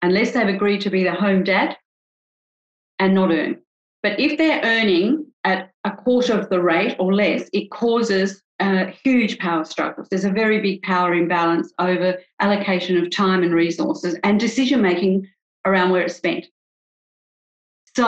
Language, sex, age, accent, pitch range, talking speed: English, female, 40-59, Australian, 185-225 Hz, 165 wpm